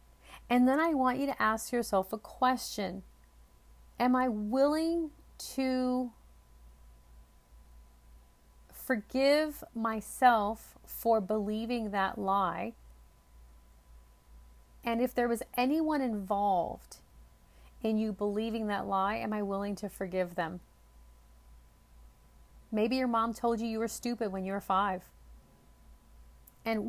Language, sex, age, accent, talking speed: English, female, 40-59, American, 110 wpm